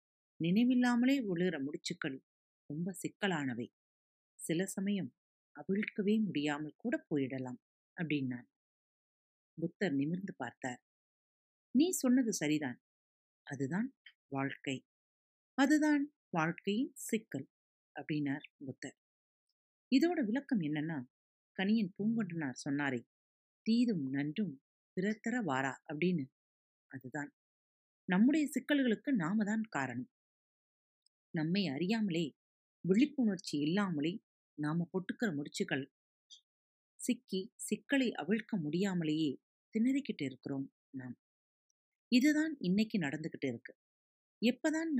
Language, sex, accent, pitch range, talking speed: Tamil, female, native, 140-230 Hz, 75 wpm